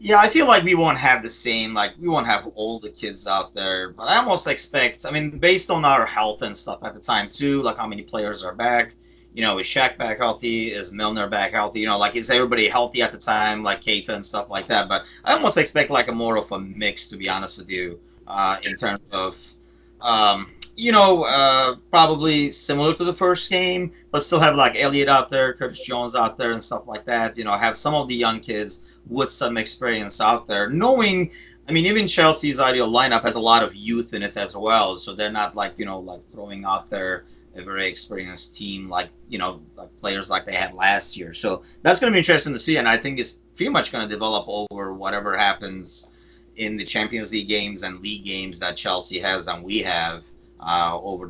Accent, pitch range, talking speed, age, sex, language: American, 95-135 Hz, 230 wpm, 30-49, male, English